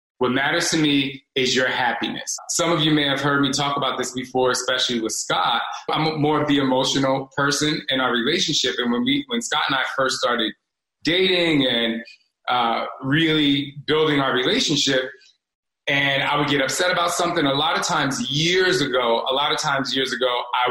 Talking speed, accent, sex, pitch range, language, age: 190 wpm, American, male, 130-155 Hz, English, 20-39